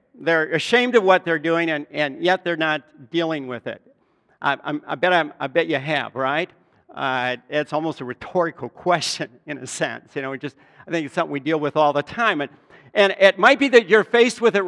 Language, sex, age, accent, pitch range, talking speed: English, male, 50-69, American, 155-210 Hz, 235 wpm